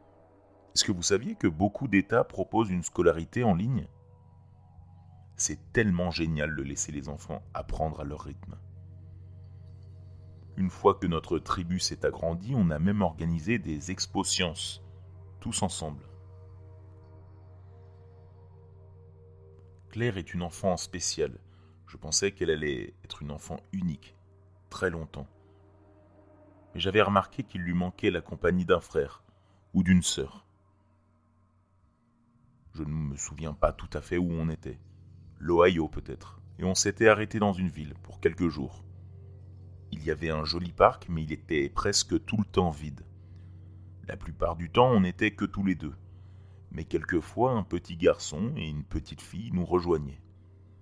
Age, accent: 30-49, French